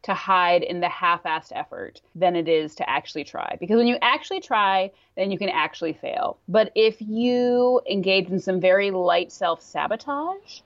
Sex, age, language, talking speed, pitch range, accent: female, 30-49, English, 175 wpm, 175-255 Hz, American